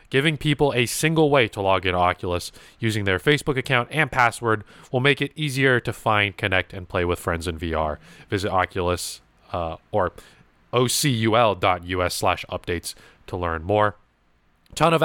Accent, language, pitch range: American, English, 90-125 Hz